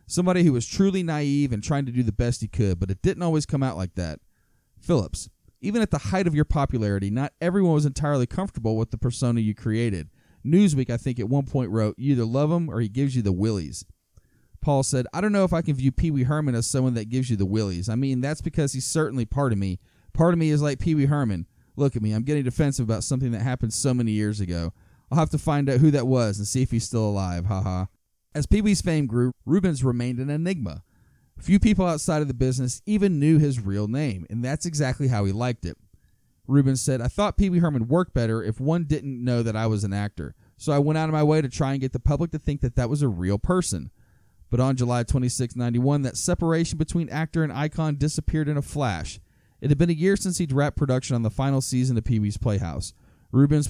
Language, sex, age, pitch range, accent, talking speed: English, male, 30-49, 115-155 Hz, American, 245 wpm